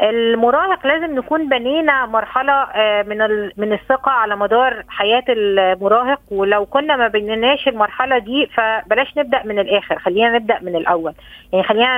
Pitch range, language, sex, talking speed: 220-275 Hz, Arabic, female, 140 wpm